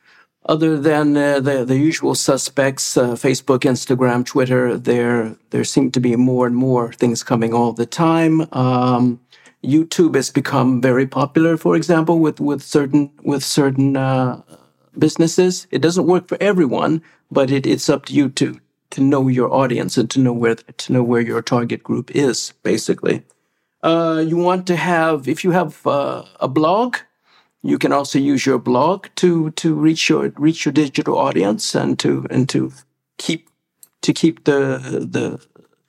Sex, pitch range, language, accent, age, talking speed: male, 130-165 Hz, English, American, 50-69, 170 wpm